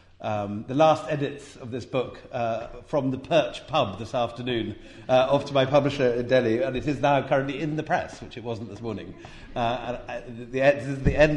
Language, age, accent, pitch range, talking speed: English, 50-69, British, 110-145 Hz, 220 wpm